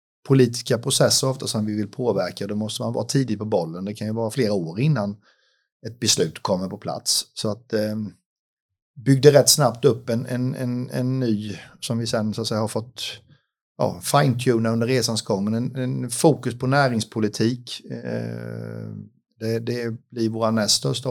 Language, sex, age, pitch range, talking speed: Swedish, male, 50-69, 105-125 Hz, 175 wpm